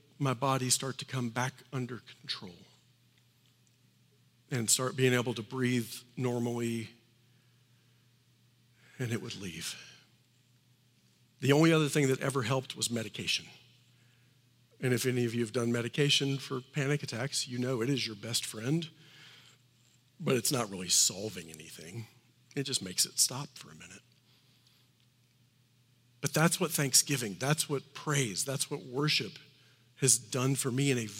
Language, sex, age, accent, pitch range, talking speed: English, male, 50-69, American, 120-145 Hz, 145 wpm